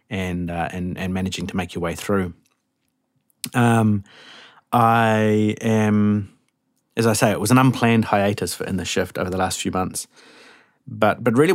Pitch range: 95-110 Hz